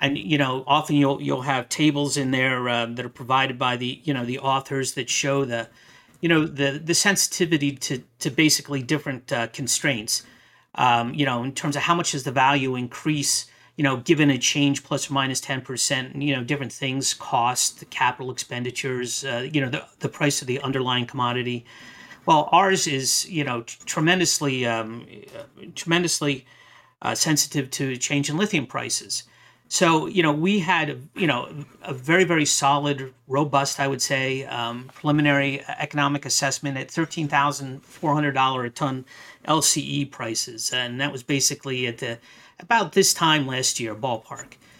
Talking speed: 175 wpm